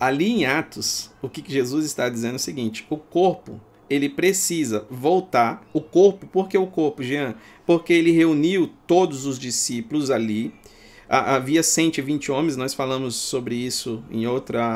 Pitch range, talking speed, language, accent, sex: 115-175 Hz, 160 wpm, Portuguese, Brazilian, male